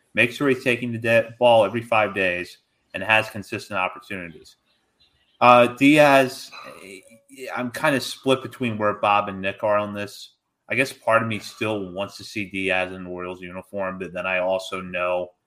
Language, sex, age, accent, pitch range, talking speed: English, male, 30-49, American, 95-115 Hz, 180 wpm